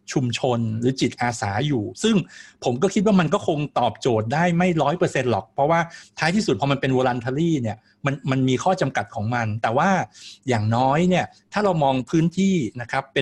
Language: Thai